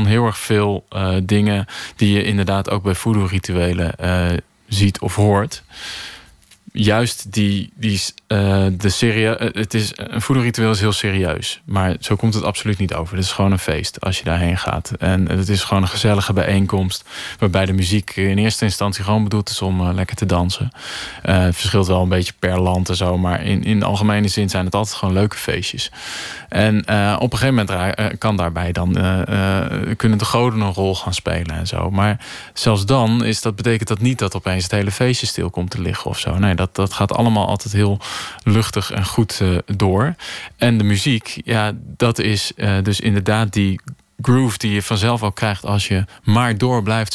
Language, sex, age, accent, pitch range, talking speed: Dutch, male, 20-39, Dutch, 95-110 Hz, 195 wpm